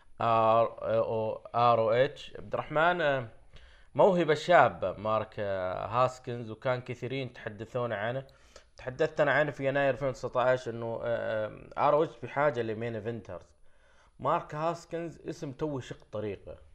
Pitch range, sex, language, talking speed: 115-155 Hz, male, Arabic, 115 wpm